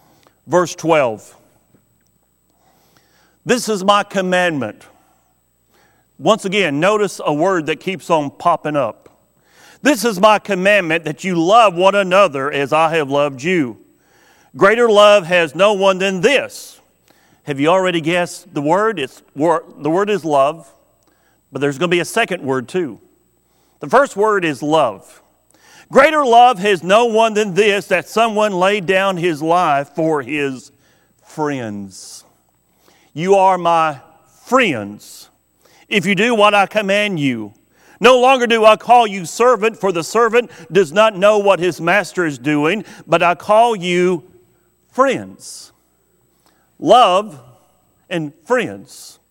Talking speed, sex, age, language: 140 wpm, male, 50-69, English